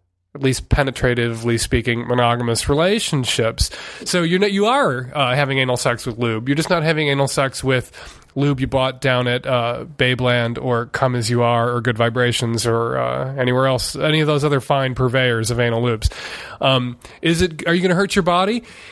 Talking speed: 195 wpm